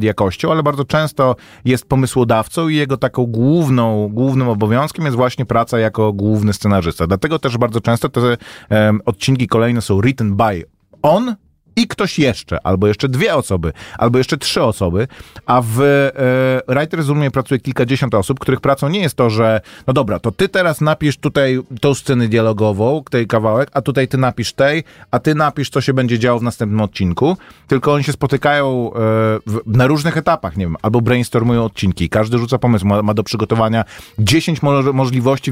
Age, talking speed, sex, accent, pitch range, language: 30-49, 175 wpm, male, native, 110-145 Hz, Polish